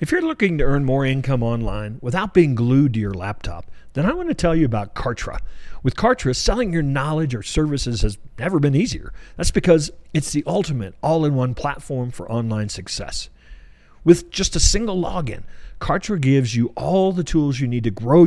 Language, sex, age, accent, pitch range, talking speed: English, male, 50-69, American, 115-170 Hz, 190 wpm